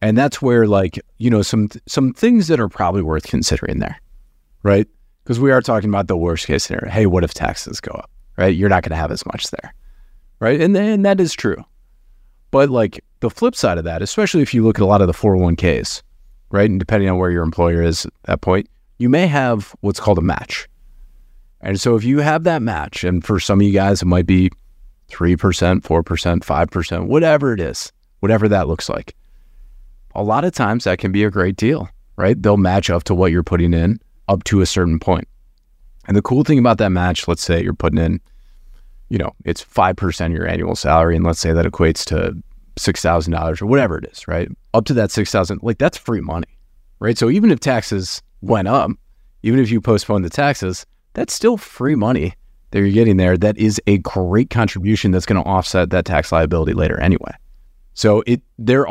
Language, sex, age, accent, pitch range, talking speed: English, male, 30-49, American, 85-115 Hz, 220 wpm